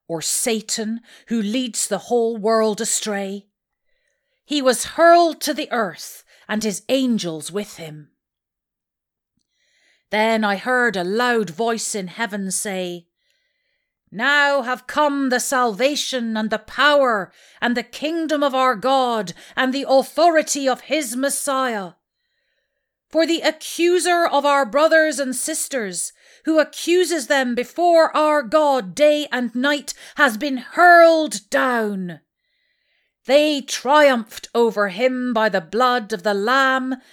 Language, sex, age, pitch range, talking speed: English, female, 40-59, 215-300 Hz, 130 wpm